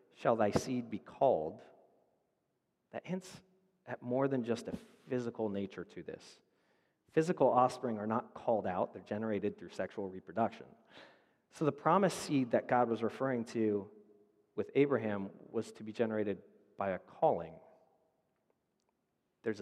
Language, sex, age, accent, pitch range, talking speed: English, male, 40-59, American, 105-125 Hz, 140 wpm